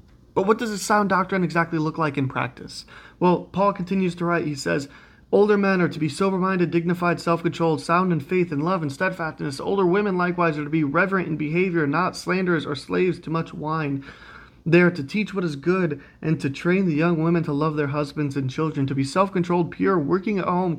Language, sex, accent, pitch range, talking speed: English, male, American, 145-180 Hz, 220 wpm